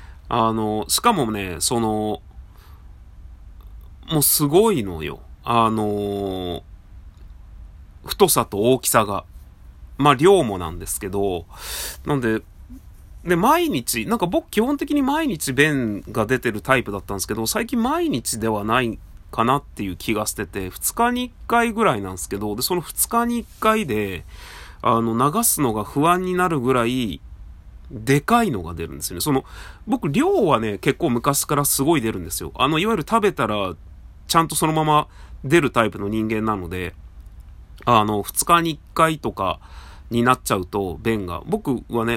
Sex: male